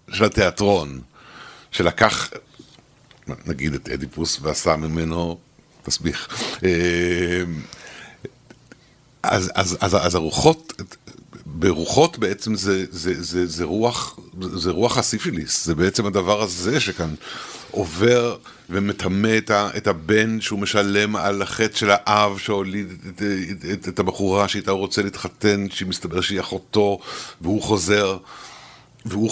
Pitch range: 90-105 Hz